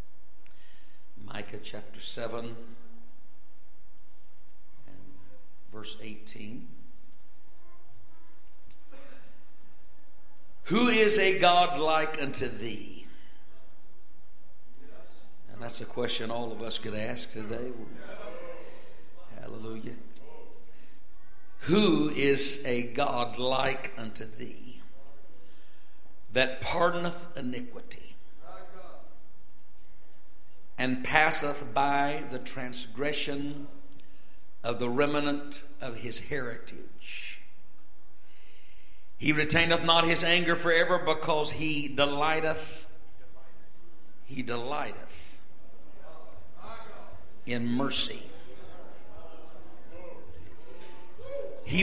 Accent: American